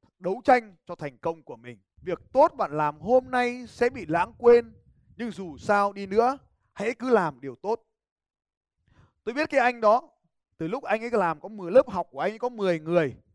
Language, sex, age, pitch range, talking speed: Vietnamese, male, 20-39, 170-240 Hz, 210 wpm